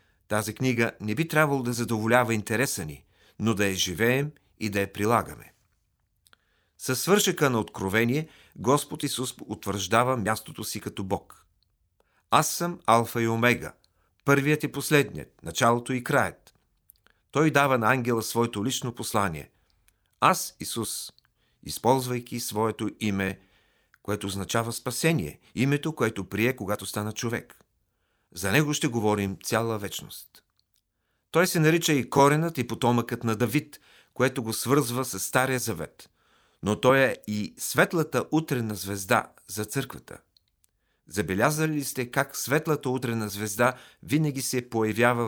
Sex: male